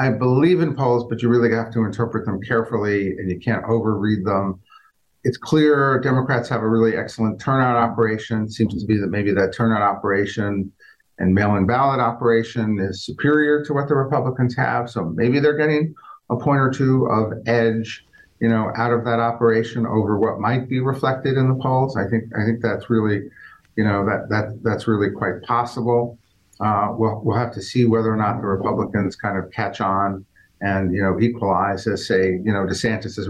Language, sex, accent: English, male, American